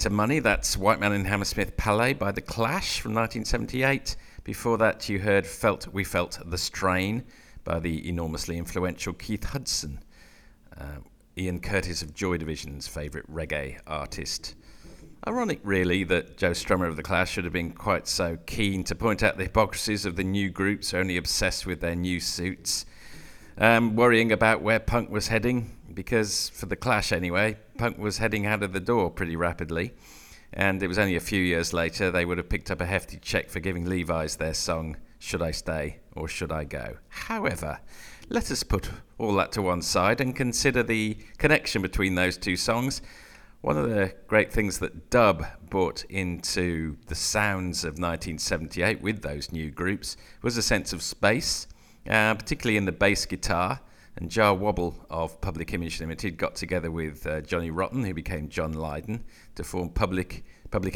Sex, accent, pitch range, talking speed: male, British, 85-110 Hz, 175 wpm